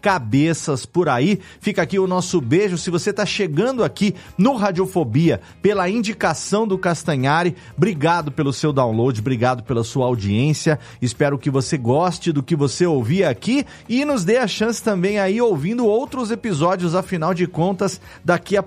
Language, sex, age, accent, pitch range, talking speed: Portuguese, male, 40-59, Brazilian, 135-190 Hz, 165 wpm